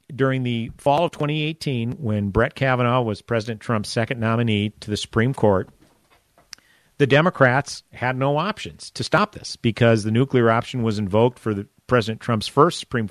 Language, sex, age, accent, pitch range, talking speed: English, male, 50-69, American, 105-125 Hz, 165 wpm